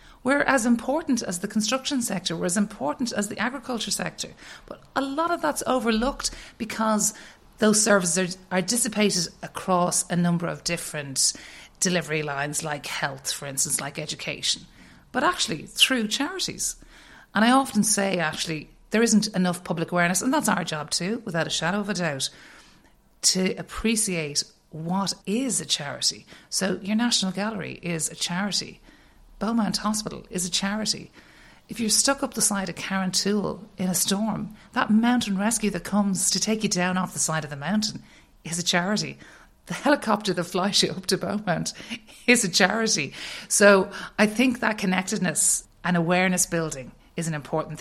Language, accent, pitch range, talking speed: English, Irish, 165-215 Hz, 165 wpm